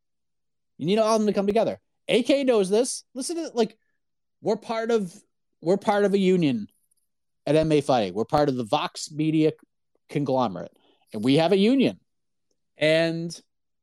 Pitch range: 160-220 Hz